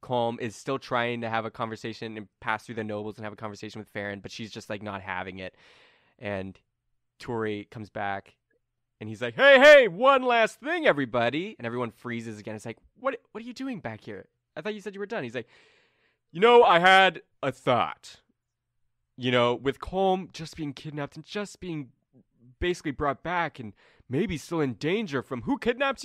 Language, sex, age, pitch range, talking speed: English, male, 20-39, 115-180 Hz, 205 wpm